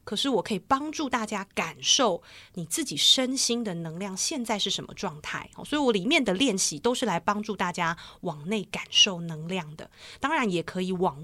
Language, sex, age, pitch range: Chinese, female, 30-49, 175-230 Hz